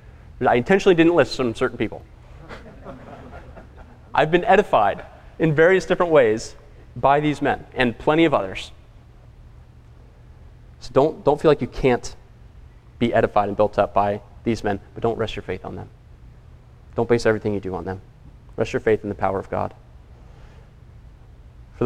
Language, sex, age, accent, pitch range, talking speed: English, male, 30-49, American, 100-125 Hz, 160 wpm